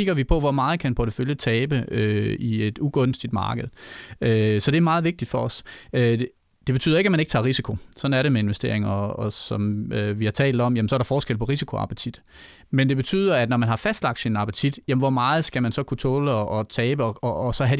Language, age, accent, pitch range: Danish, 30-49, native, 115-145 Hz